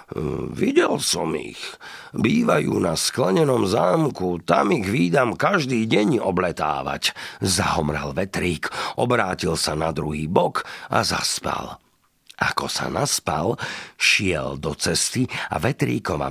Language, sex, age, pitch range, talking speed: Slovak, male, 50-69, 90-150 Hz, 110 wpm